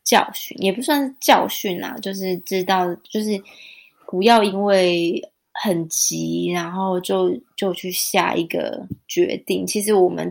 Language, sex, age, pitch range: Chinese, female, 20-39, 175-195 Hz